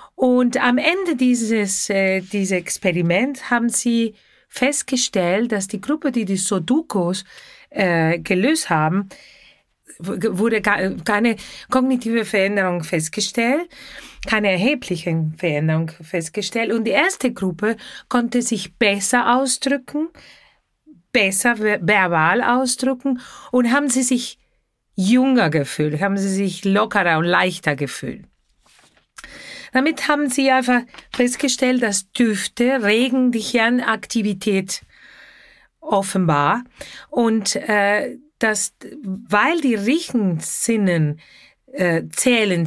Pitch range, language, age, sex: 190-250 Hz, German, 40-59, female